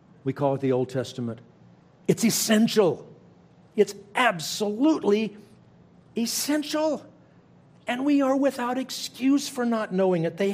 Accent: American